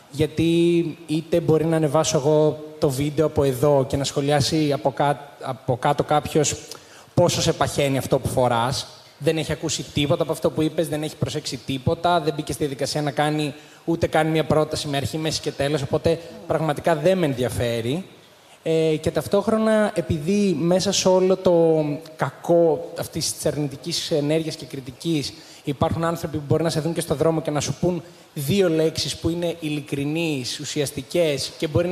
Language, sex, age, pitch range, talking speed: Greek, male, 20-39, 145-170 Hz, 170 wpm